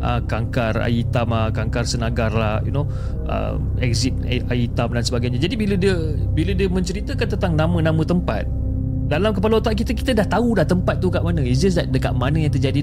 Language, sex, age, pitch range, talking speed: Malay, male, 30-49, 120-150 Hz, 180 wpm